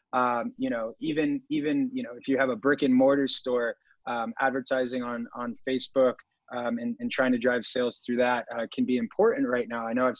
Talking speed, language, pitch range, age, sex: 225 wpm, English, 125-150 Hz, 20-39, male